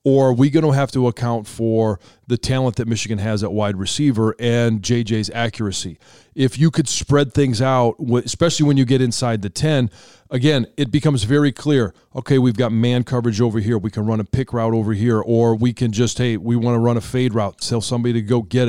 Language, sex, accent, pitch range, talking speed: English, male, American, 110-130 Hz, 225 wpm